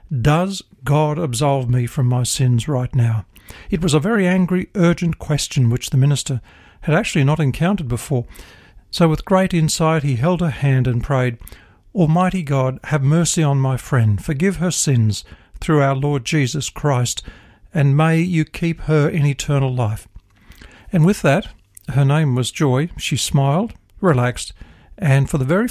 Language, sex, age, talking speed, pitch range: English, male, 60-79, 165 wpm, 120-165 Hz